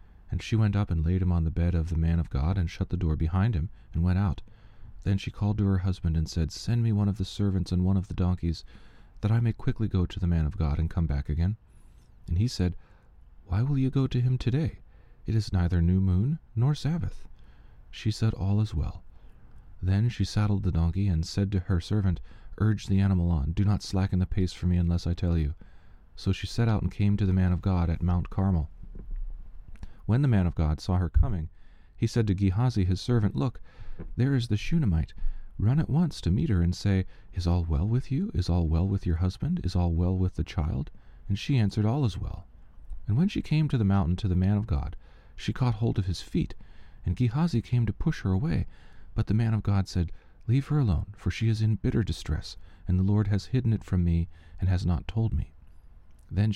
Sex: male